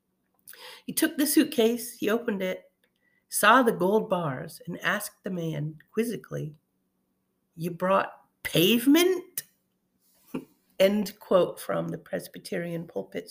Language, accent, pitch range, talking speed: English, American, 165-230 Hz, 115 wpm